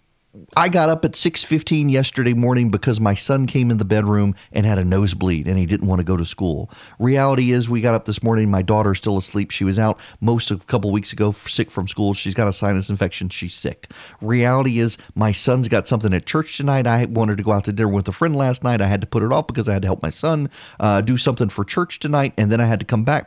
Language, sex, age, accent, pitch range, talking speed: English, male, 40-59, American, 105-145 Hz, 265 wpm